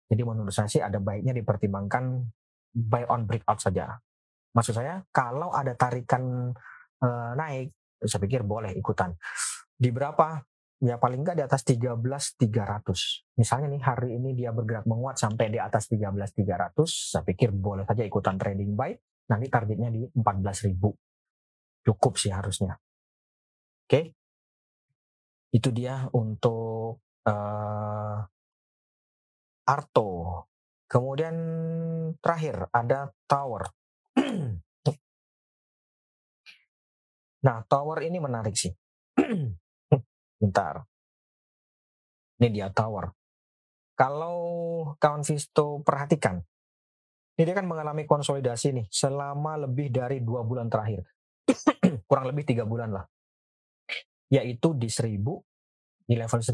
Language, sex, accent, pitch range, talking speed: Indonesian, male, native, 105-135 Hz, 110 wpm